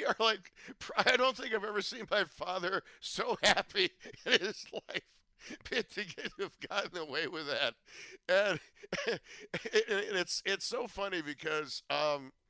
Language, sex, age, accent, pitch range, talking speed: English, male, 60-79, American, 165-220 Hz, 120 wpm